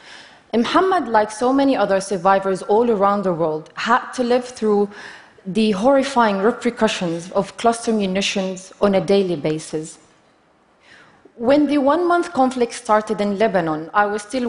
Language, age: Chinese, 30-49